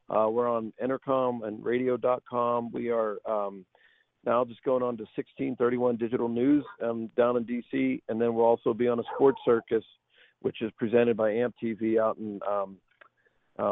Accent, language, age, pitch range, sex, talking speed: American, English, 50-69, 115-130 Hz, male, 175 wpm